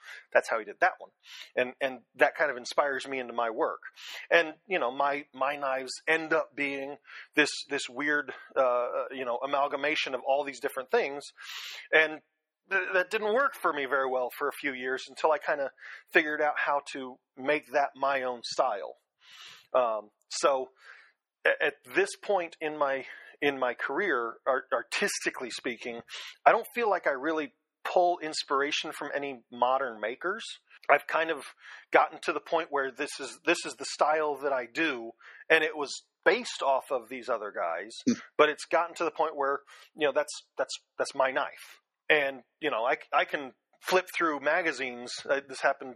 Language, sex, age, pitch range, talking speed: English, male, 40-59, 130-155 Hz, 185 wpm